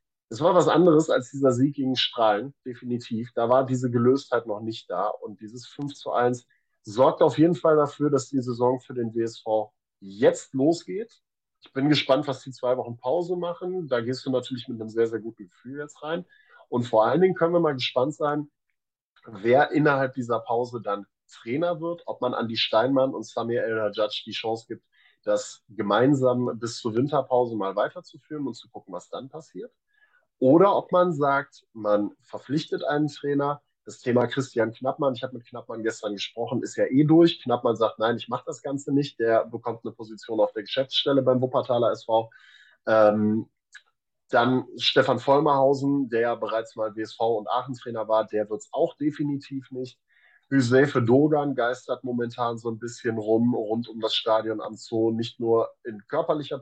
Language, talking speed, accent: German, 180 wpm, German